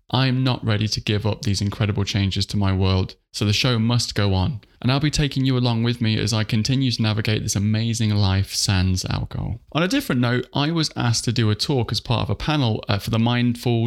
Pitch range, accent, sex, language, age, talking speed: 105-120 Hz, British, male, English, 20-39, 240 wpm